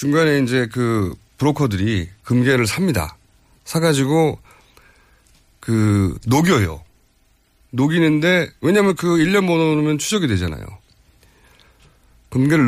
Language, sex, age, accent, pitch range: Korean, male, 40-59, native, 95-150 Hz